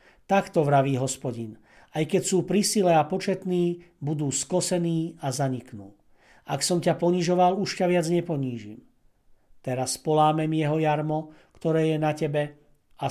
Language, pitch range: Slovak, 130-170 Hz